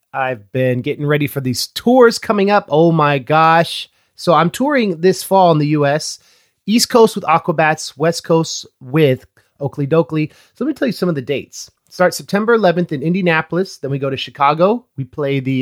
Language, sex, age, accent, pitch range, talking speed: English, male, 30-49, American, 135-175 Hz, 195 wpm